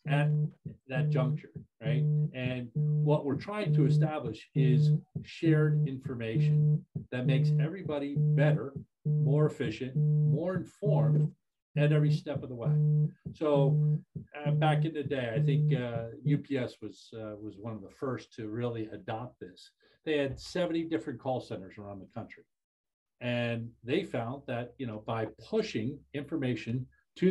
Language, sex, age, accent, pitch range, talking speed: English, male, 50-69, American, 125-155 Hz, 145 wpm